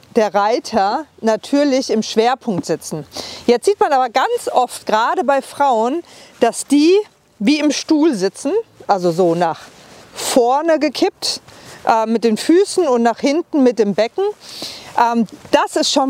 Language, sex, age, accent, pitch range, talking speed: German, female, 40-59, German, 215-280 Hz, 150 wpm